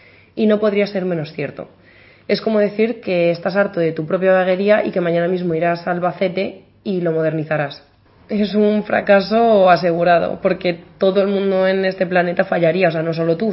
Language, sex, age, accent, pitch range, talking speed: Spanish, female, 20-39, Spanish, 170-200 Hz, 190 wpm